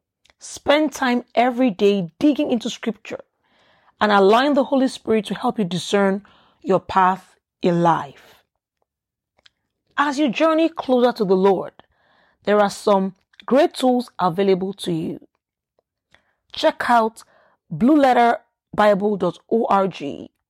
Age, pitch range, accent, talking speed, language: 40-59, 195-250 Hz, Nigerian, 110 wpm, English